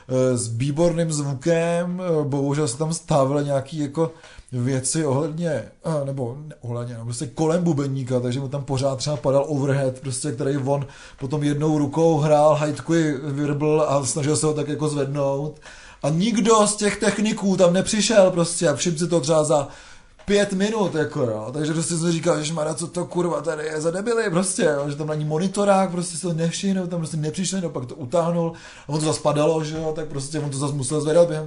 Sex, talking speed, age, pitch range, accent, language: male, 185 wpm, 20-39, 140-165 Hz, native, Czech